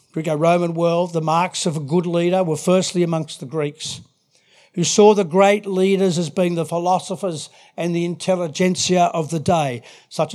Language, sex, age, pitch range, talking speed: English, male, 50-69, 160-190 Hz, 170 wpm